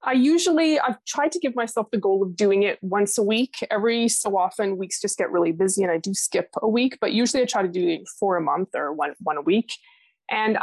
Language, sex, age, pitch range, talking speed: English, female, 20-39, 180-240 Hz, 255 wpm